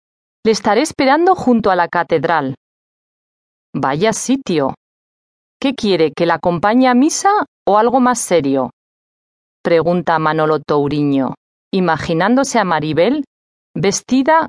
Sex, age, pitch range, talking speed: female, 40-59, 155-240 Hz, 110 wpm